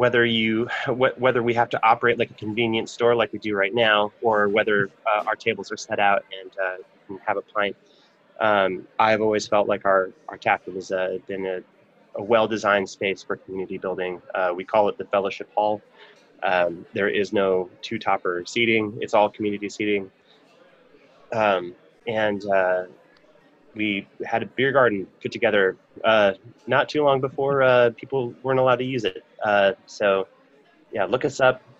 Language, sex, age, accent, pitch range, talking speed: English, male, 20-39, American, 100-120 Hz, 175 wpm